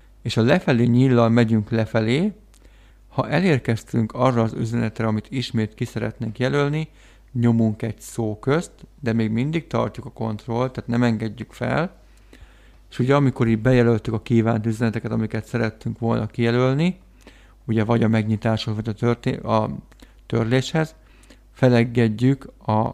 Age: 50-69